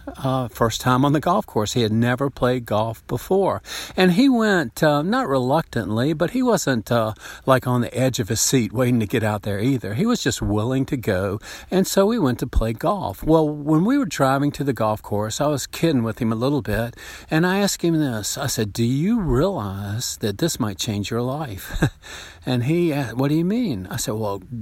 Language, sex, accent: English, male, American